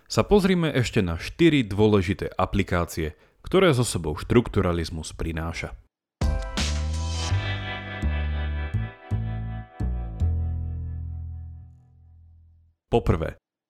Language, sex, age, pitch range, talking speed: Slovak, male, 30-49, 85-120 Hz, 55 wpm